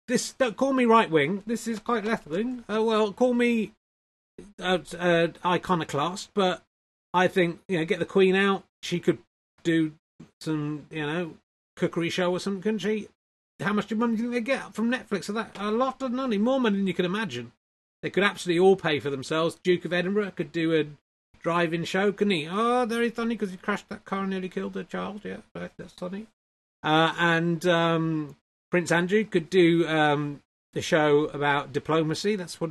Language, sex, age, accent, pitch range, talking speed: English, male, 30-49, British, 170-230 Hz, 200 wpm